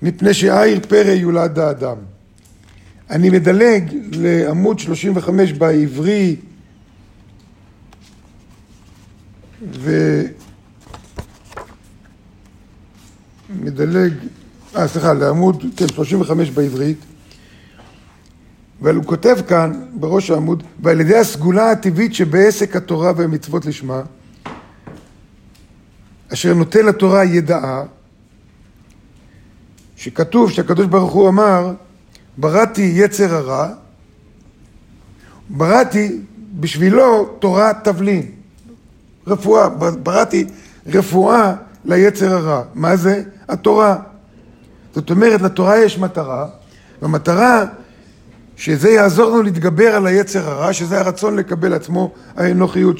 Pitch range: 130-195 Hz